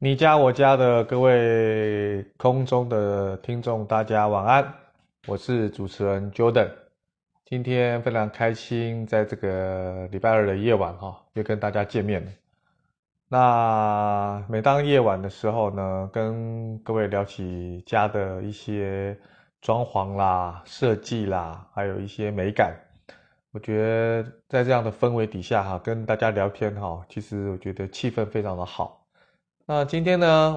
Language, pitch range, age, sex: Chinese, 100-125 Hz, 20-39, male